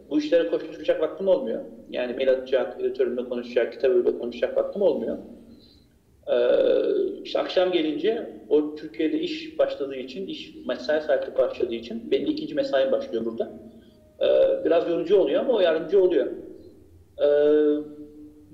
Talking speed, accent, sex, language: 135 wpm, Turkish, male, English